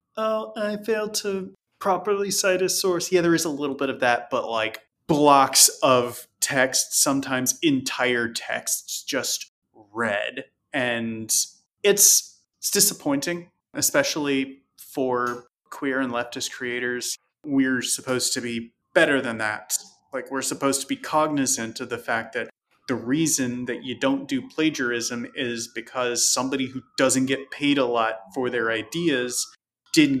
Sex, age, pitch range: male, 30-49, 120-155 Hz